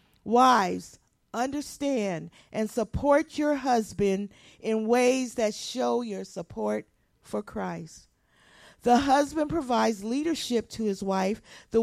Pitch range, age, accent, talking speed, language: 195-255 Hz, 40-59, American, 110 wpm, English